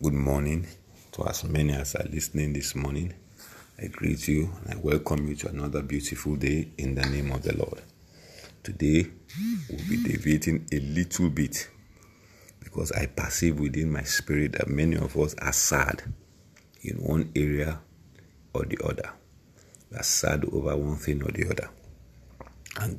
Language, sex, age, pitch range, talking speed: English, male, 50-69, 75-85 Hz, 160 wpm